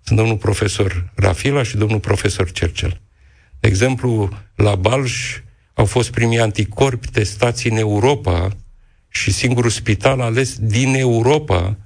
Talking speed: 125 wpm